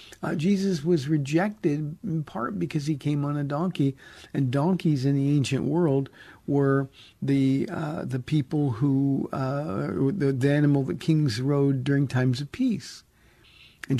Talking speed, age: 155 wpm, 50-69